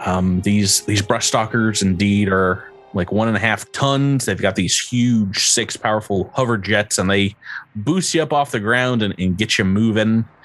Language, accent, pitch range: English, American, 95-120 Hz